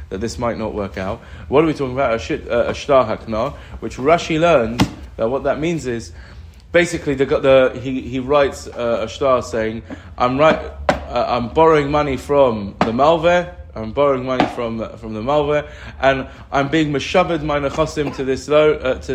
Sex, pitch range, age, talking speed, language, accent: male, 110-145 Hz, 20-39, 180 wpm, English, British